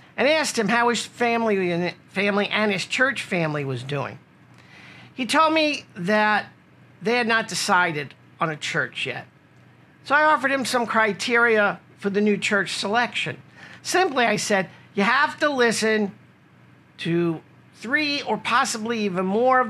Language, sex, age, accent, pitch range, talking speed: English, male, 50-69, American, 180-240 Hz, 150 wpm